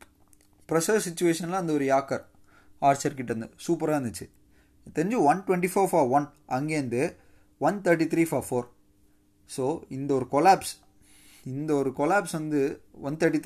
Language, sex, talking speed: Tamil, male, 140 wpm